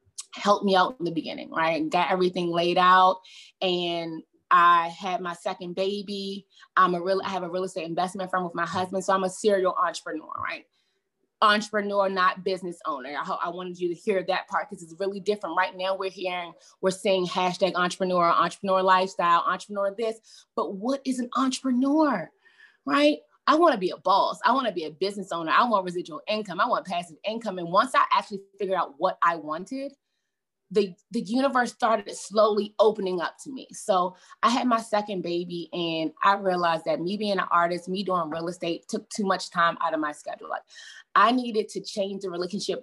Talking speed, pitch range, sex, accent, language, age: 200 wpm, 175-225 Hz, female, American, English, 20-39